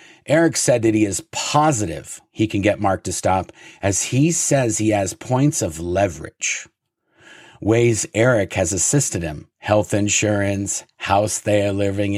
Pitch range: 100-145 Hz